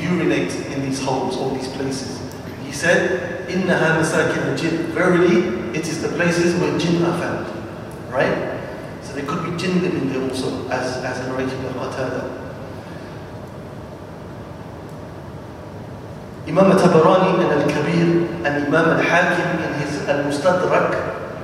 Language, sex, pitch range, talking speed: English, male, 145-185 Hz, 120 wpm